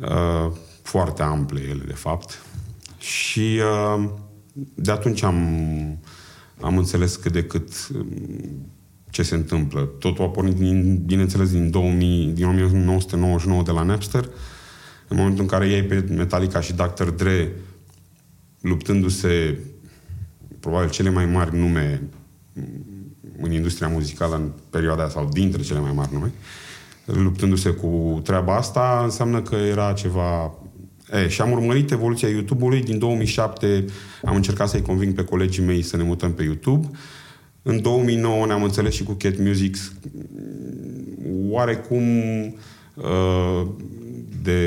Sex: male